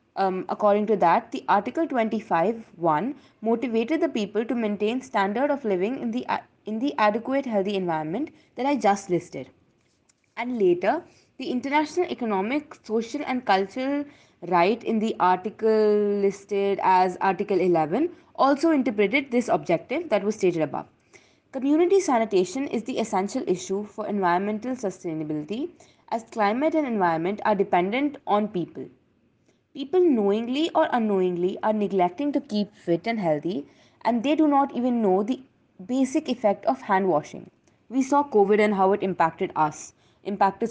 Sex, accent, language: female, Indian, English